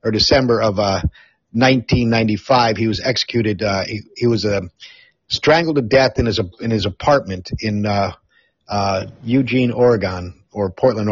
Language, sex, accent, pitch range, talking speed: English, male, American, 105-130 Hz, 150 wpm